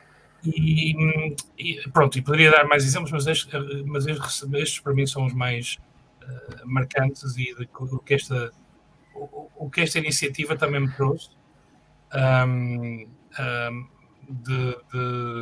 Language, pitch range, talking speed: English, 125-145 Hz, 135 wpm